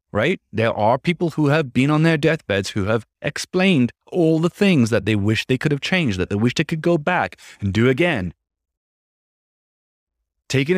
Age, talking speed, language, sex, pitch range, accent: 30-49, 190 wpm, English, male, 90-150 Hz, American